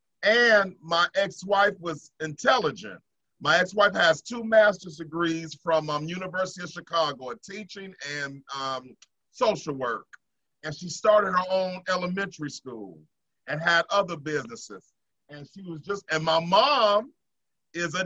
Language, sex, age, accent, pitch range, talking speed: English, male, 40-59, American, 160-200 Hz, 140 wpm